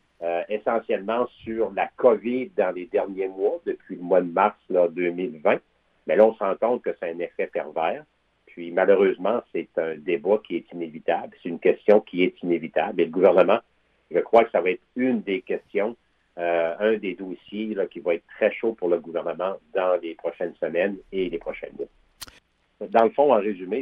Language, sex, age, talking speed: French, male, 60-79, 195 wpm